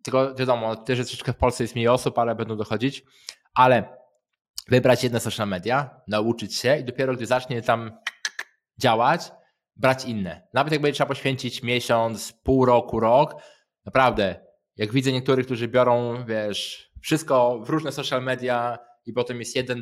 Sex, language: male, Polish